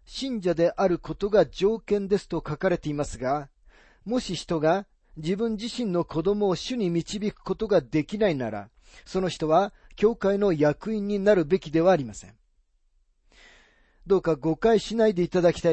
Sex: male